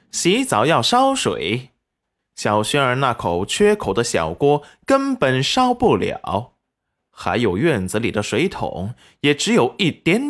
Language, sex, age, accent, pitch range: Chinese, male, 20-39, native, 115-195 Hz